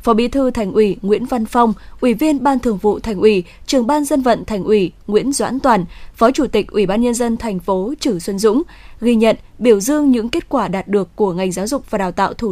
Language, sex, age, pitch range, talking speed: Vietnamese, female, 10-29, 205-260 Hz, 255 wpm